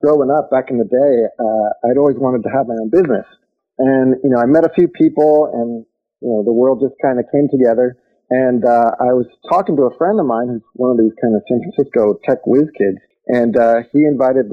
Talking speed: 240 wpm